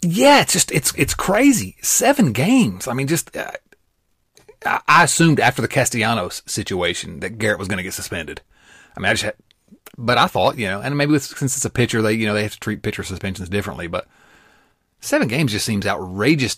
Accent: American